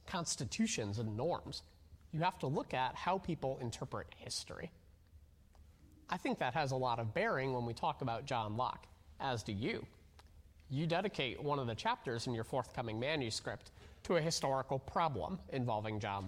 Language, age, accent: English, 30-49, American